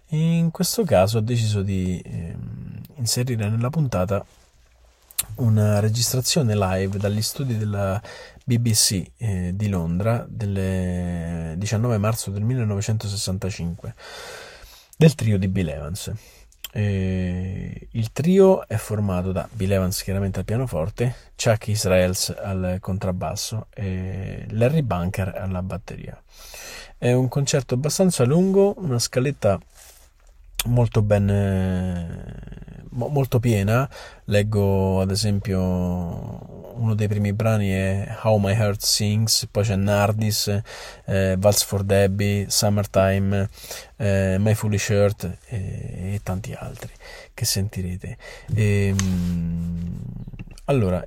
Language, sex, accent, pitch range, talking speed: Italian, male, native, 95-120 Hz, 110 wpm